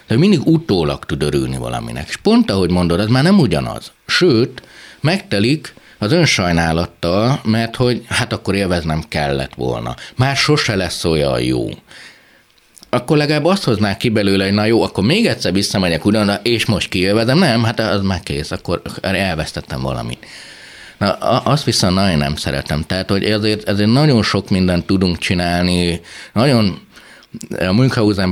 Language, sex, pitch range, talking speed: Hungarian, male, 80-110 Hz, 155 wpm